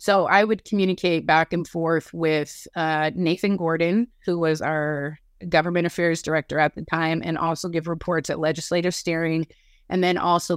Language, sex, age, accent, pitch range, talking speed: English, female, 30-49, American, 165-200 Hz, 170 wpm